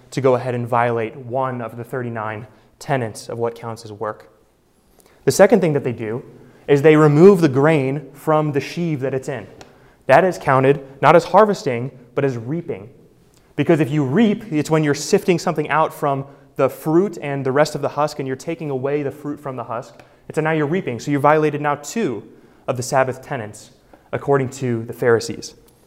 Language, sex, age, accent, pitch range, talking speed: English, male, 20-39, American, 130-160 Hz, 200 wpm